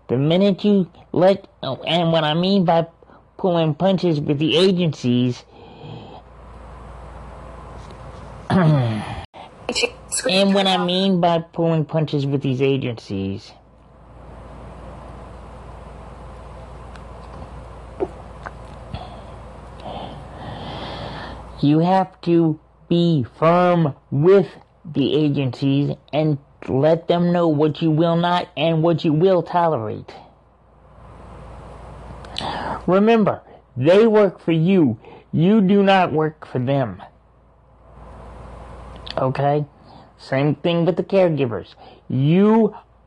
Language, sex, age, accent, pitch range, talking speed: English, male, 30-49, American, 130-175 Hz, 90 wpm